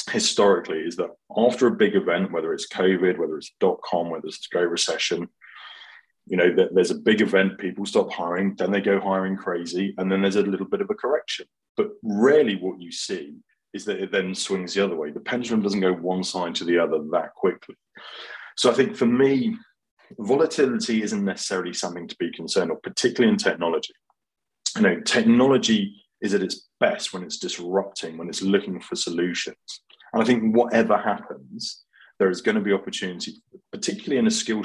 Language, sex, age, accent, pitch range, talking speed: English, male, 30-49, British, 95-150 Hz, 190 wpm